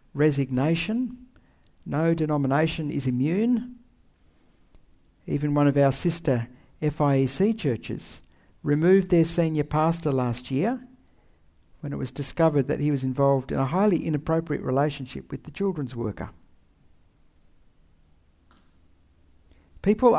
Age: 60-79